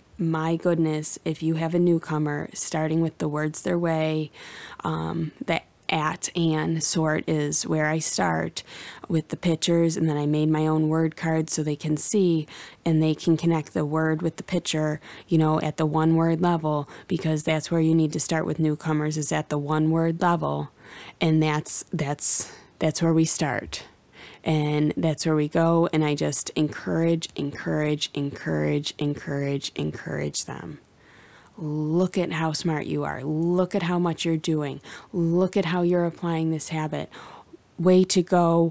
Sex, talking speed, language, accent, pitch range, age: female, 170 wpm, English, American, 150-165 Hz, 20-39